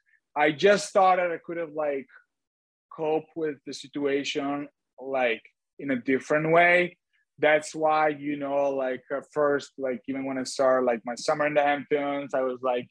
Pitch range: 130-170 Hz